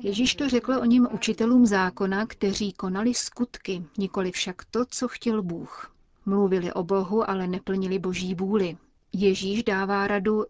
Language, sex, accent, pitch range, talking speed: Czech, female, native, 185-225 Hz, 150 wpm